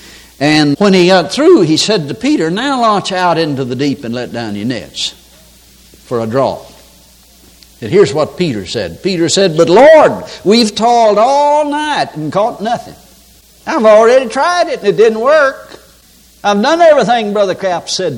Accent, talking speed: American, 175 wpm